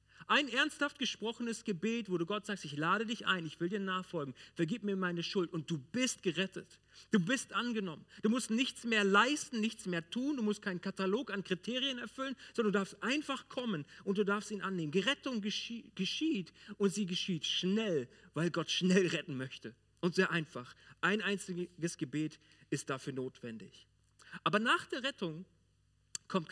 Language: German